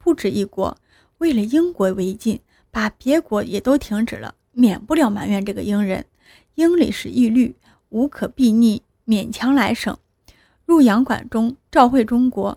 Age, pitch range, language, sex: 20-39, 215-280 Hz, Chinese, female